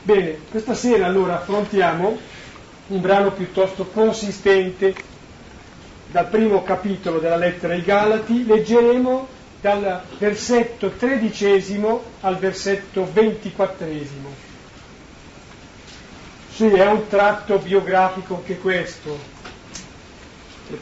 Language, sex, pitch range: Italian, male, 180-220 Hz